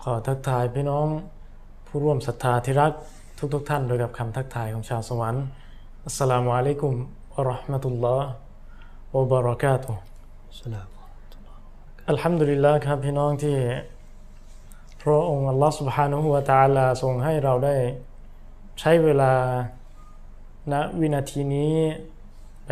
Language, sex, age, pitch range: Thai, male, 20-39, 120-145 Hz